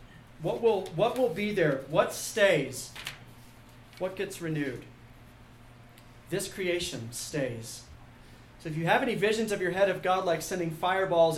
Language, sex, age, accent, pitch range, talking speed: English, male, 40-59, American, 140-195 Hz, 150 wpm